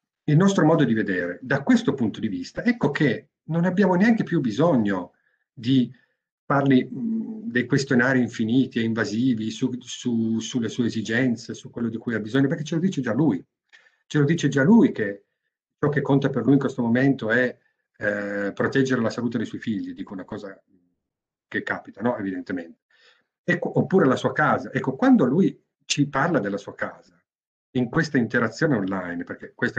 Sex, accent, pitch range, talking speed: male, native, 110-165 Hz, 180 wpm